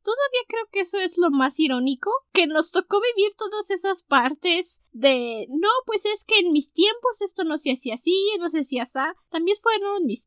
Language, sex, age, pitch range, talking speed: Spanish, female, 10-29, 275-390 Hz, 205 wpm